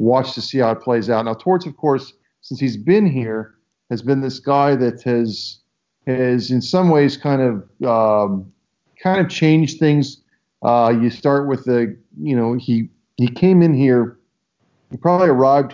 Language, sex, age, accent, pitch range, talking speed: English, male, 40-59, American, 120-145 Hz, 180 wpm